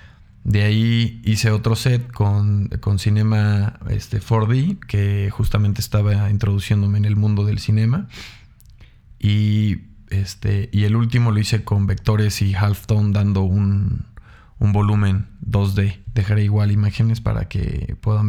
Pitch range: 100-115 Hz